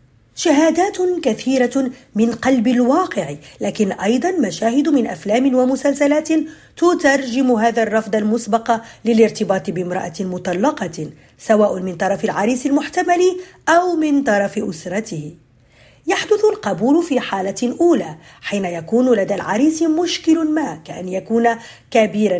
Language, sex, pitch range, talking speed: Arabic, female, 195-280 Hz, 110 wpm